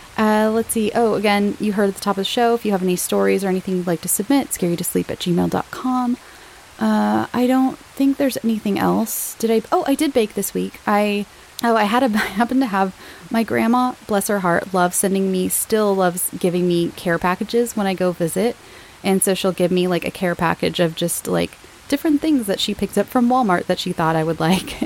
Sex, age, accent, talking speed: female, 20-39, American, 235 wpm